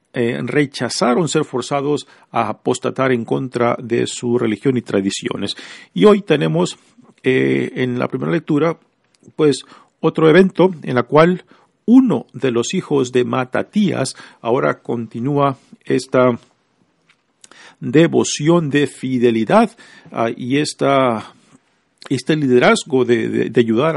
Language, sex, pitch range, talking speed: Spanish, male, 125-165 Hz, 120 wpm